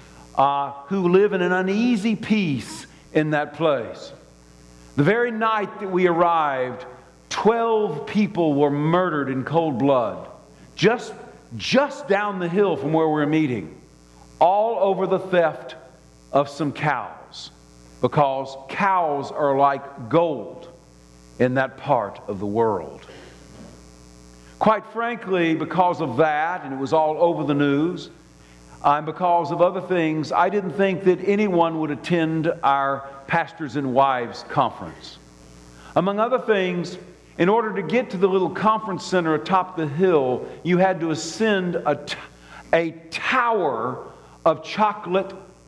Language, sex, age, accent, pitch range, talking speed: English, male, 50-69, American, 135-190 Hz, 135 wpm